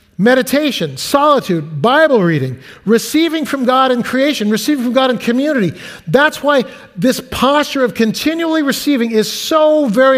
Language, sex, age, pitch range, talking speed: English, male, 50-69, 225-285 Hz, 140 wpm